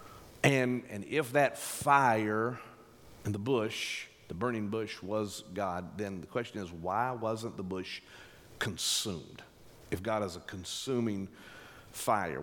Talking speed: 135 wpm